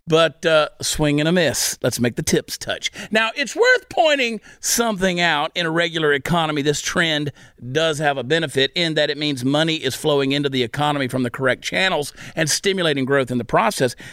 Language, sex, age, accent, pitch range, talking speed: English, male, 50-69, American, 150-195 Hz, 200 wpm